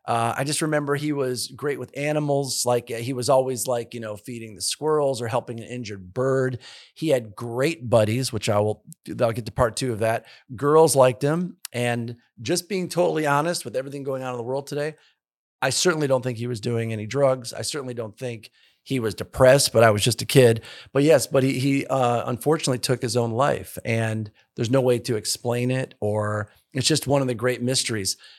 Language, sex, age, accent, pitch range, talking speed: English, male, 40-59, American, 115-140 Hz, 220 wpm